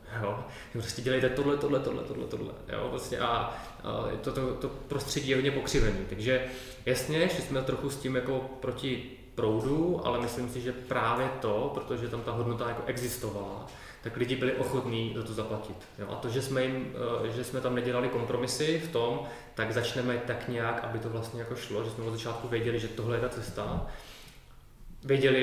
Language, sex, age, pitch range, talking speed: Czech, male, 20-39, 115-125 Hz, 190 wpm